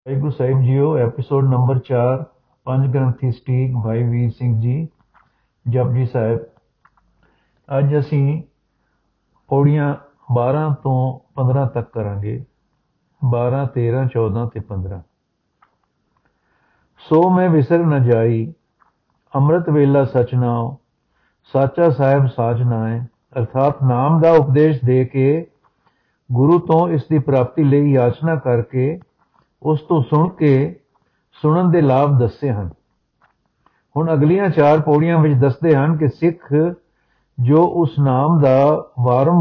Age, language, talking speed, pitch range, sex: 50-69, Punjabi, 120 wpm, 125-155 Hz, male